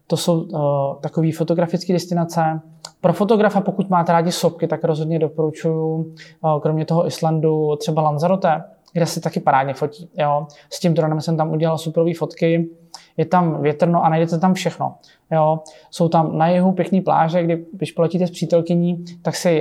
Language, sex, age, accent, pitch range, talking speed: Czech, male, 20-39, native, 160-180 Hz, 170 wpm